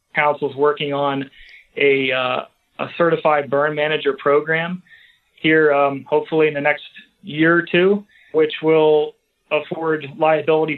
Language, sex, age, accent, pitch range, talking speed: English, male, 30-49, American, 145-165 Hz, 130 wpm